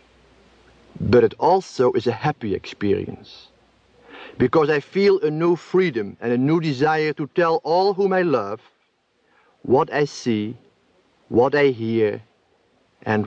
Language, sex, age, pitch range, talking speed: English, male, 50-69, 125-160 Hz, 135 wpm